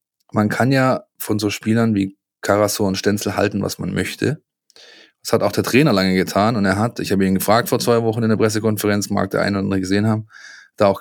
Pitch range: 100-120 Hz